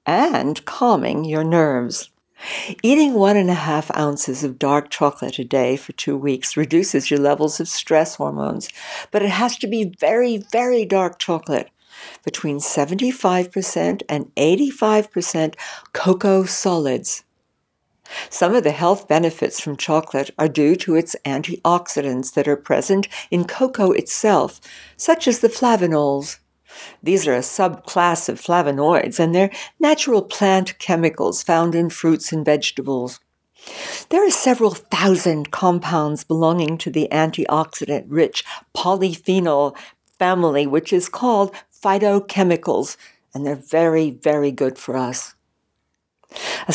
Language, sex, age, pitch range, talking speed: English, female, 60-79, 150-200 Hz, 130 wpm